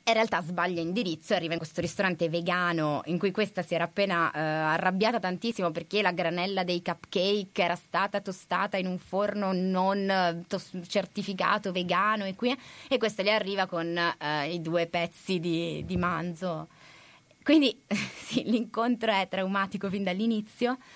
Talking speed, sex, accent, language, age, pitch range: 155 wpm, female, native, Italian, 20-39, 155-185 Hz